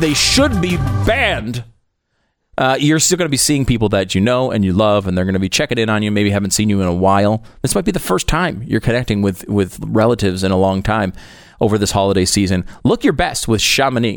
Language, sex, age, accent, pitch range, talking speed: English, male, 30-49, American, 100-135 Hz, 245 wpm